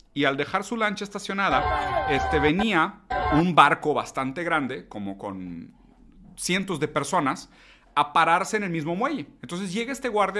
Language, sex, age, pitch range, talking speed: Spanish, male, 40-59, 130-190 Hz, 155 wpm